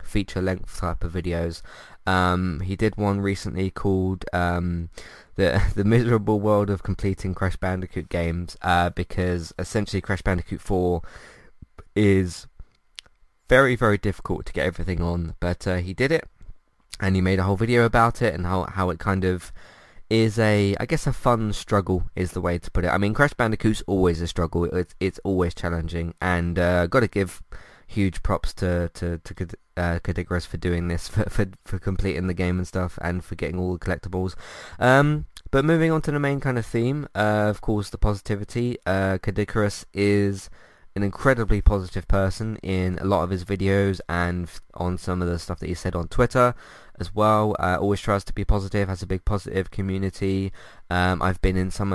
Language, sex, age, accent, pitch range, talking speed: English, male, 20-39, British, 90-105 Hz, 190 wpm